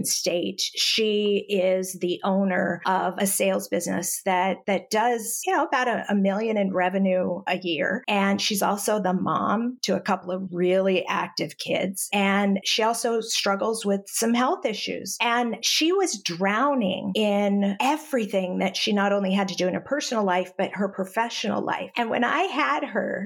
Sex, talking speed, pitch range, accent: female, 175 wpm, 190-240 Hz, American